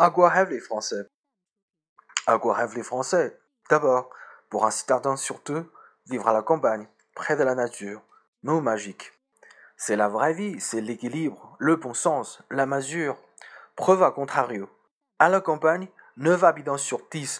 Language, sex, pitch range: Chinese, male, 130-165 Hz